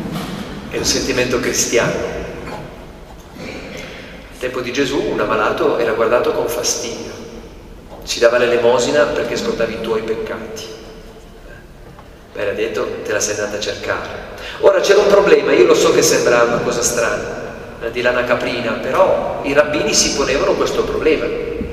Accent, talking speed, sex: native, 150 wpm, male